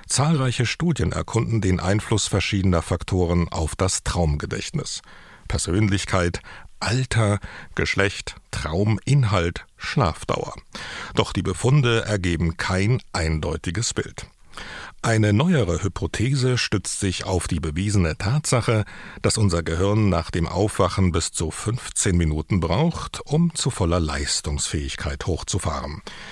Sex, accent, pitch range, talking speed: male, German, 85-115 Hz, 105 wpm